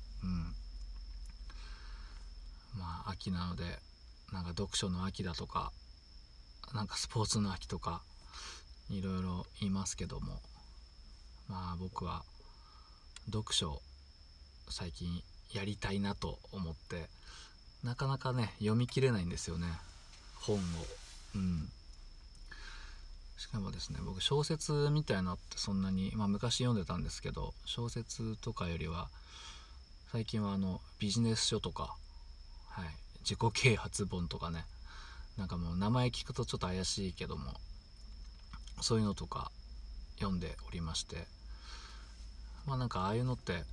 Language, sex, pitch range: Japanese, male, 75-105 Hz